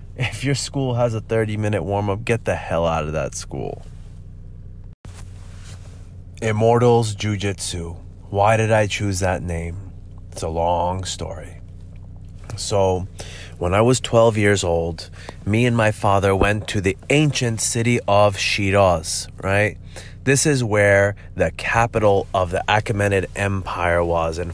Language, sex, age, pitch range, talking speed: English, male, 20-39, 90-105 Hz, 135 wpm